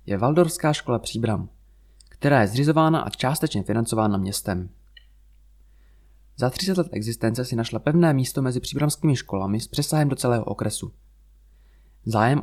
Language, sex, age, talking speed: Czech, male, 20-39, 135 wpm